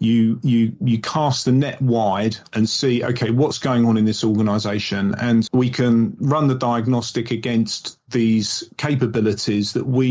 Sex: male